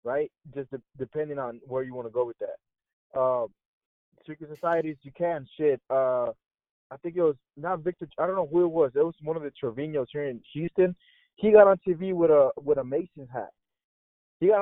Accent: American